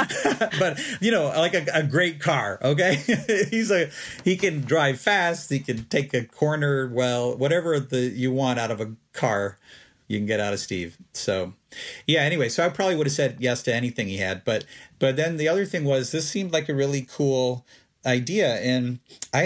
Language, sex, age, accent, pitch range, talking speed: English, male, 40-59, American, 105-135 Hz, 200 wpm